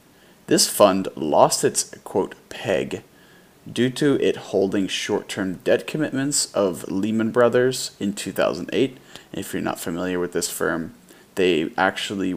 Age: 30-49